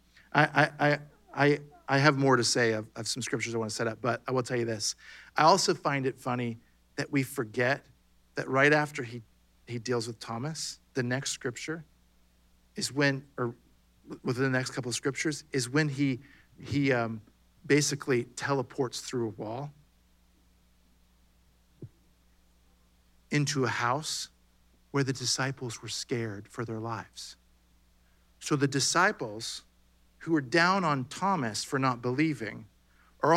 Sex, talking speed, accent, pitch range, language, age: male, 150 wpm, American, 100-145 Hz, English, 50-69